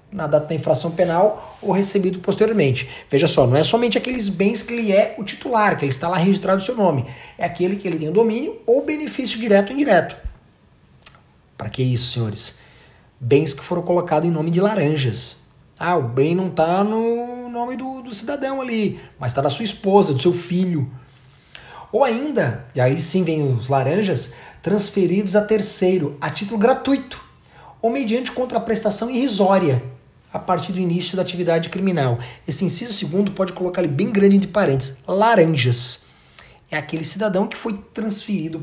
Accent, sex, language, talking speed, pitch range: Brazilian, male, Portuguese, 175 wpm, 140-210 Hz